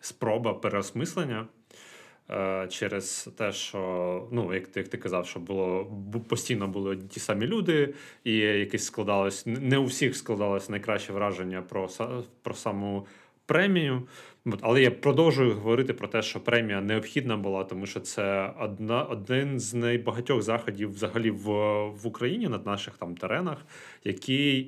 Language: Ukrainian